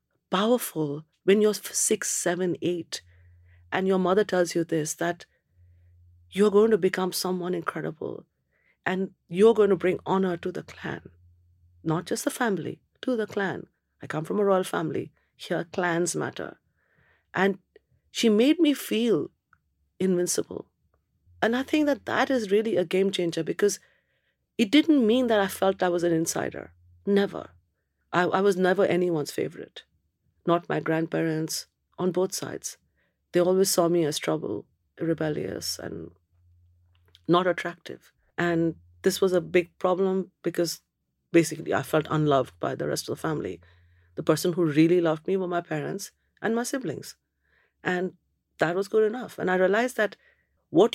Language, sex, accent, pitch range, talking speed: English, female, Indian, 150-195 Hz, 155 wpm